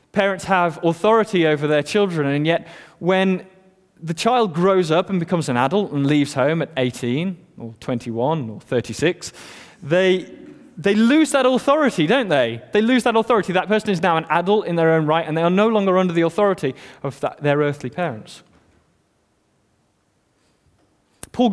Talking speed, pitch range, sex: 170 wpm, 135-190 Hz, male